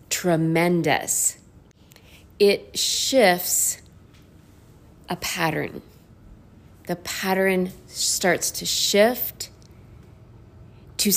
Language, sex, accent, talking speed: English, female, American, 60 wpm